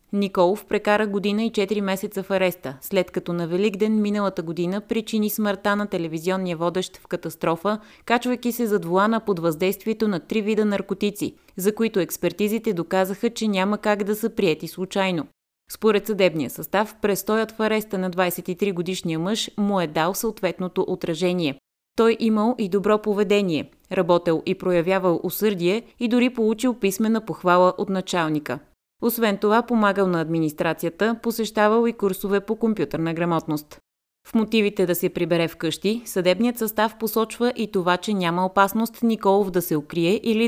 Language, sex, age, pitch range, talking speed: Bulgarian, female, 30-49, 175-215 Hz, 155 wpm